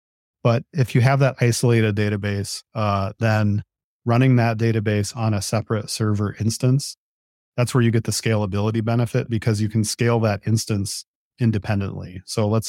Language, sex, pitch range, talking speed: English, male, 100-115 Hz, 155 wpm